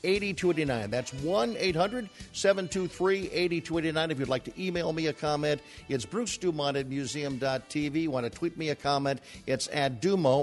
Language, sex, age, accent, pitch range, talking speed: English, male, 50-69, American, 125-150 Hz, 220 wpm